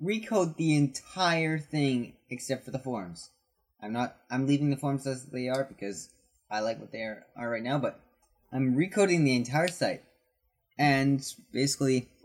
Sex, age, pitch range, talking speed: male, 20-39, 115-140 Hz, 165 wpm